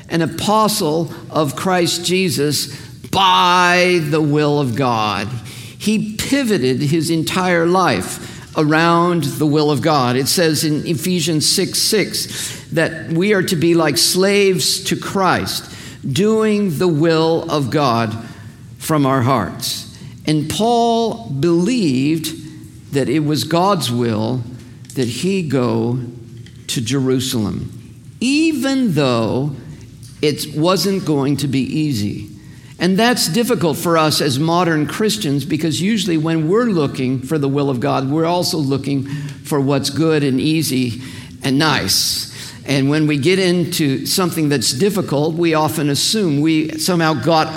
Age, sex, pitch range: 50-69, male, 135-175 Hz